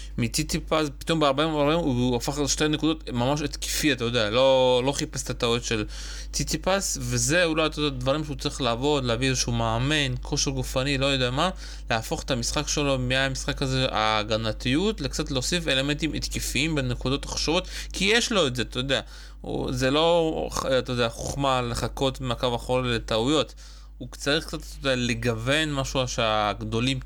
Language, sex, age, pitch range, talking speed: Hebrew, male, 20-39, 115-140 Hz, 160 wpm